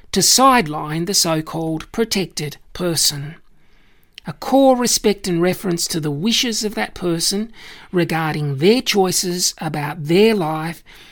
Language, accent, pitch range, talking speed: English, Australian, 155-210 Hz, 125 wpm